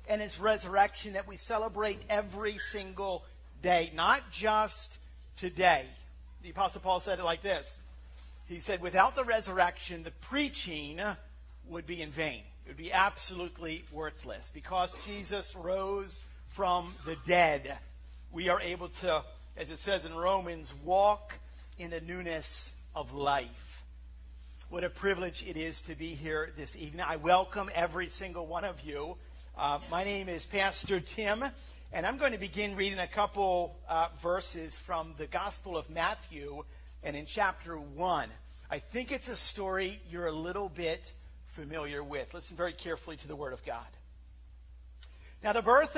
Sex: male